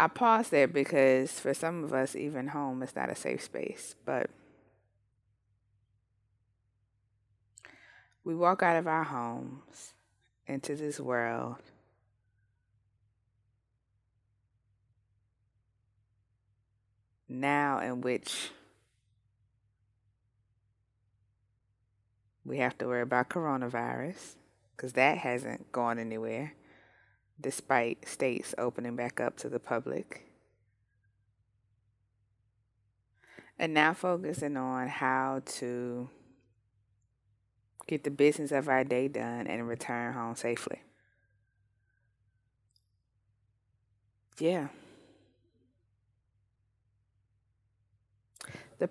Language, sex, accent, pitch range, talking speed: English, female, American, 105-130 Hz, 80 wpm